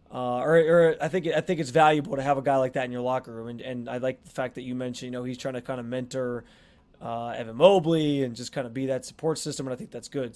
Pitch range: 135-165 Hz